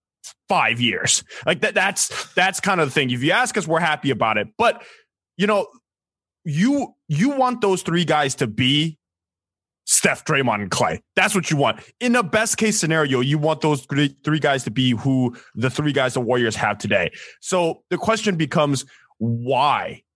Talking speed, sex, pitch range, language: 185 wpm, male, 120-160 Hz, English